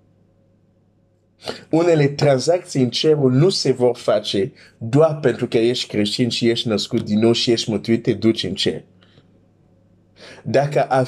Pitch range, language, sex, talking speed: 105-130 Hz, Romanian, male, 145 wpm